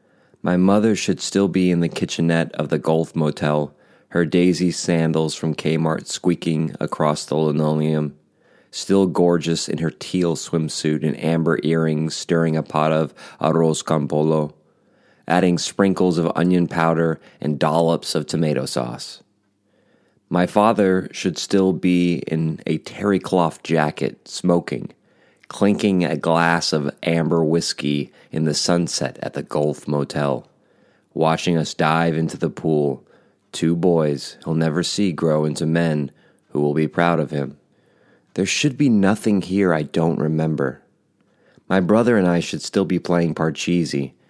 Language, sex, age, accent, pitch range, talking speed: English, male, 30-49, American, 75-85 Hz, 145 wpm